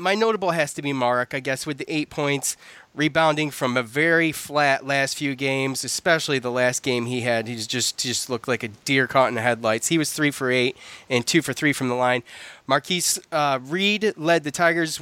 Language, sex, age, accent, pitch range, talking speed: English, male, 30-49, American, 125-160 Hz, 225 wpm